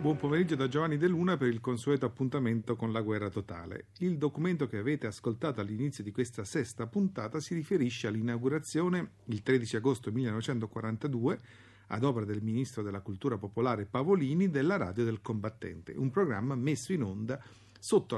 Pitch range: 105-150 Hz